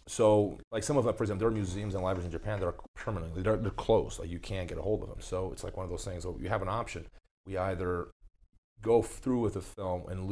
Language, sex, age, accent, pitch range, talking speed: English, male, 30-49, American, 85-100 Hz, 280 wpm